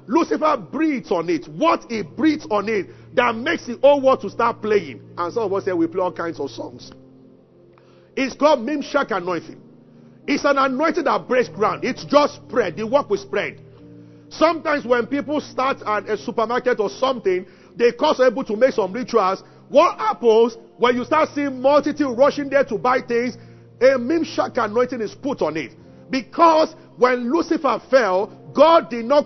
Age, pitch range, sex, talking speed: 50-69, 215-285 Hz, male, 180 wpm